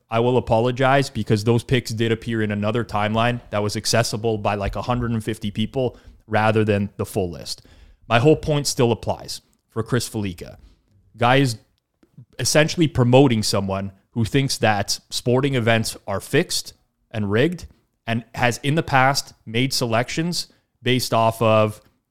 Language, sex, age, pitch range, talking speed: English, male, 30-49, 110-130 Hz, 145 wpm